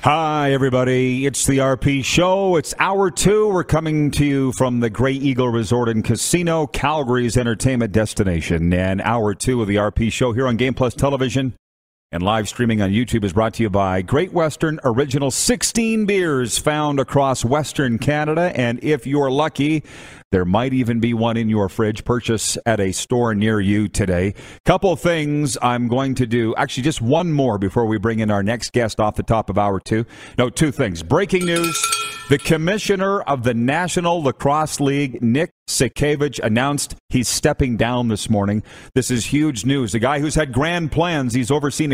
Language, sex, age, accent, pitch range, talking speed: English, male, 40-59, American, 115-145 Hz, 185 wpm